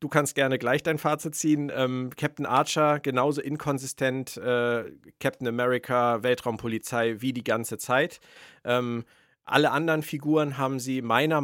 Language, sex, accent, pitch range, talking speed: German, male, German, 115-140 Hz, 140 wpm